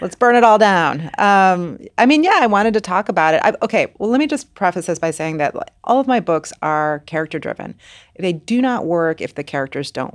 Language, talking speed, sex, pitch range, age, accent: English, 230 wpm, female, 150-190 Hz, 30-49, American